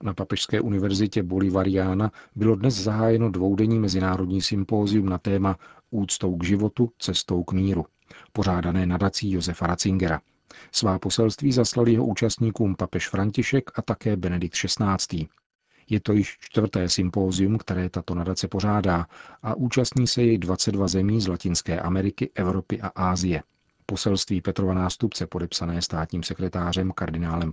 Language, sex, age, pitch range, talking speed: Czech, male, 40-59, 90-105 Hz, 135 wpm